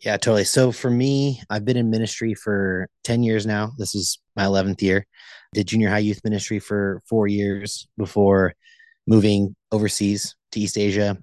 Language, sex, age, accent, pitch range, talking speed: English, male, 30-49, American, 100-115 Hz, 170 wpm